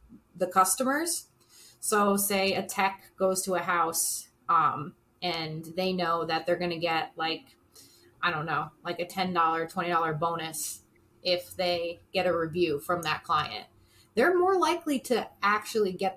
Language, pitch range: English, 170-210 Hz